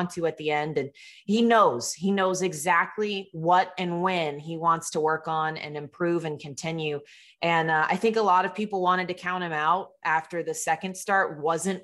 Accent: American